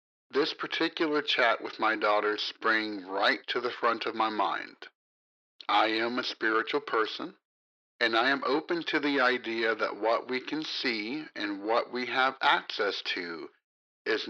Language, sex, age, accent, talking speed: English, male, 50-69, American, 160 wpm